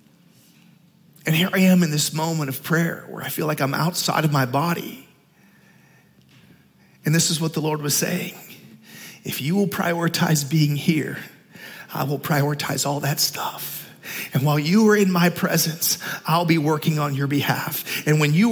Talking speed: 175 wpm